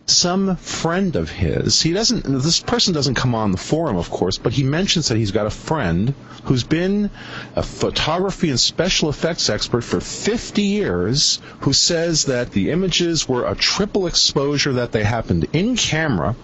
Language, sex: English, male